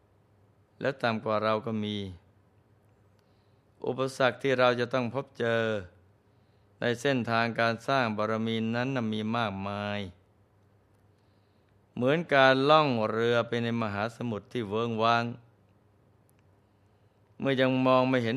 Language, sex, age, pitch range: Thai, male, 20-39, 105-120 Hz